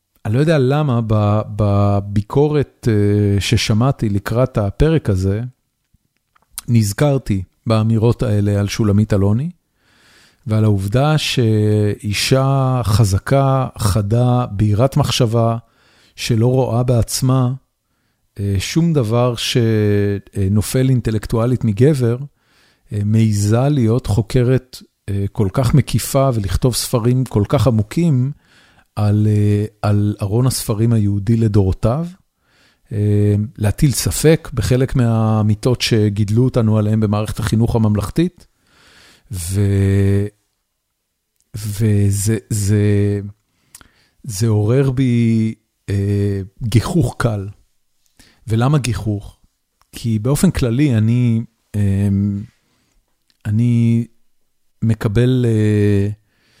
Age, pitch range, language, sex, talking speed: 40-59, 105-125 Hz, Hebrew, male, 80 wpm